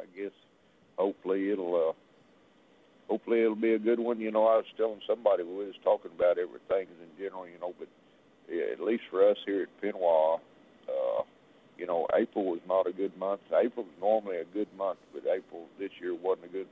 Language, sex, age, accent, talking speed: English, male, 60-79, American, 205 wpm